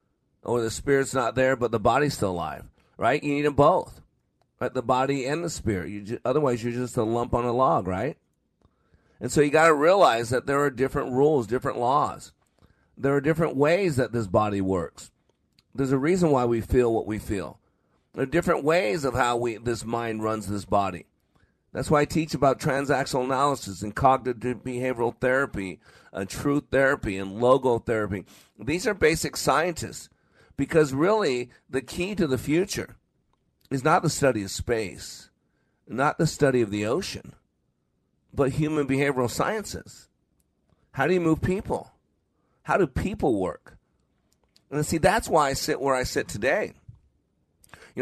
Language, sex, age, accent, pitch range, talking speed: English, male, 40-59, American, 110-140 Hz, 170 wpm